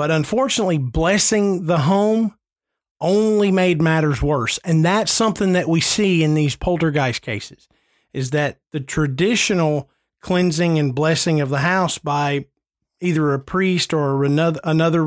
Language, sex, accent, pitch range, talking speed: English, male, American, 145-185 Hz, 140 wpm